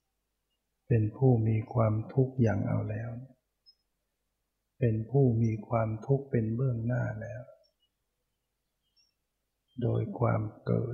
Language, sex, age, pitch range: Thai, male, 60-79, 110-130 Hz